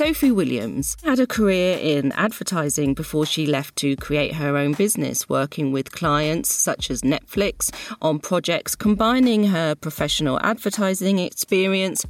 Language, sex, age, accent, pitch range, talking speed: English, female, 40-59, British, 150-220 Hz, 140 wpm